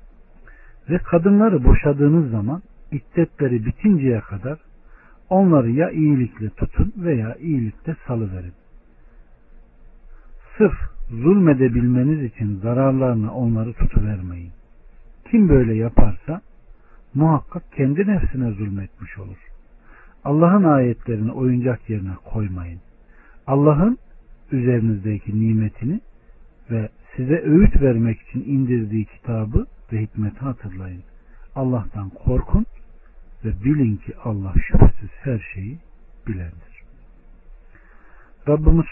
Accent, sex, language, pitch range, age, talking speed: native, male, Turkish, 105-145 Hz, 60-79, 90 wpm